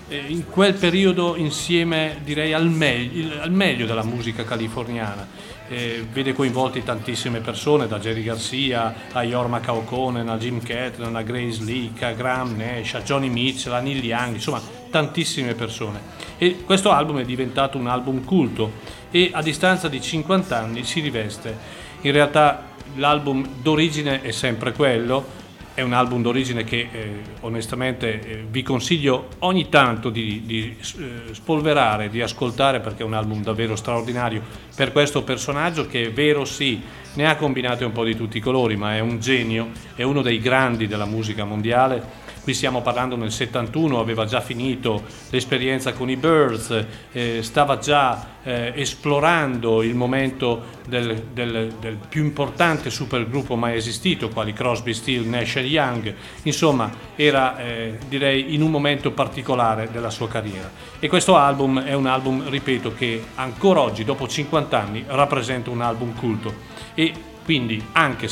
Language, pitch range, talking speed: Italian, 115-140 Hz, 155 wpm